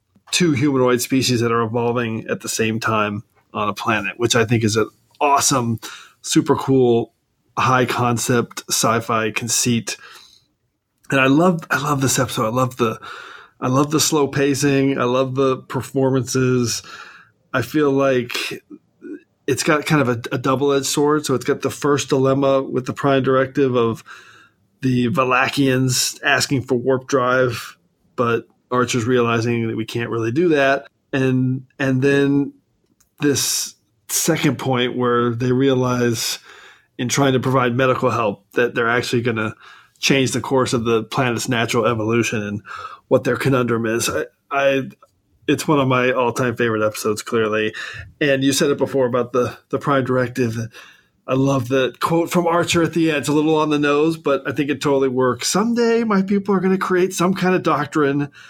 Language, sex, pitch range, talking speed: English, male, 120-140 Hz, 170 wpm